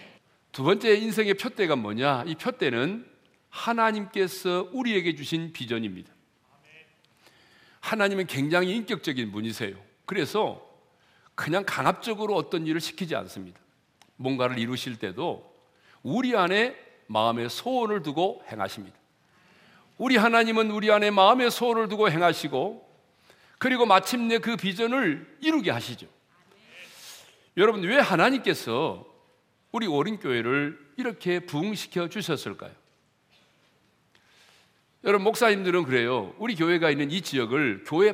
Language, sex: Korean, male